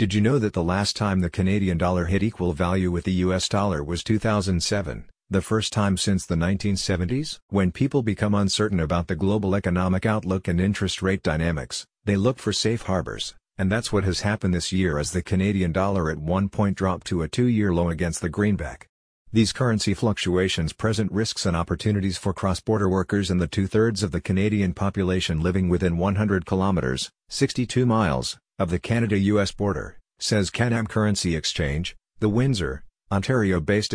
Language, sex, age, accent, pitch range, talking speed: English, male, 50-69, American, 90-105 Hz, 175 wpm